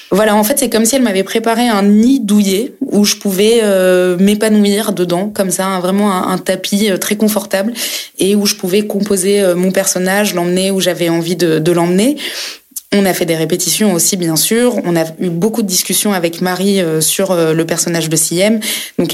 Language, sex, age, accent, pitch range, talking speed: French, female, 20-39, French, 170-205 Hz, 195 wpm